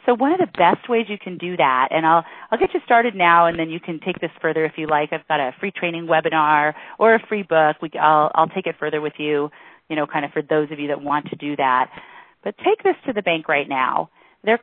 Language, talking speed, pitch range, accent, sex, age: English, 275 wpm, 160-260 Hz, American, female, 40-59